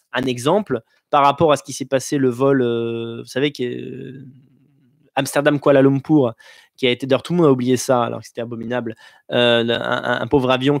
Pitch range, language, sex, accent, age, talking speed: 125-170 Hz, French, male, French, 20-39, 210 wpm